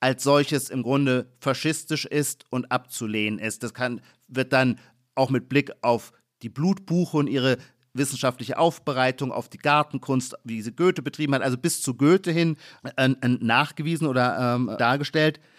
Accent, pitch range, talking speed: German, 125-150 Hz, 160 wpm